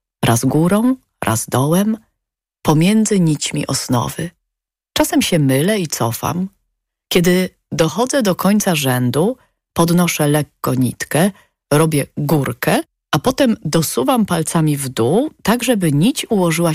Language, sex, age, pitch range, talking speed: Polish, female, 40-59, 155-210 Hz, 115 wpm